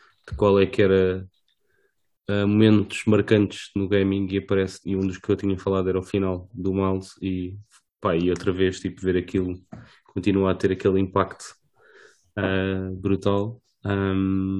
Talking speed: 140 wpm